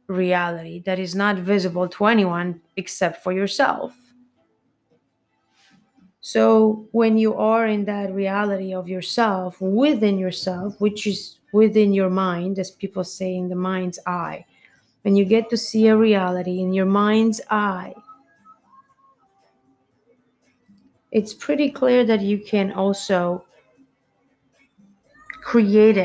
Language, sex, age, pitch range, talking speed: English, female, 30-49, 185-235 Hz, 120 wpm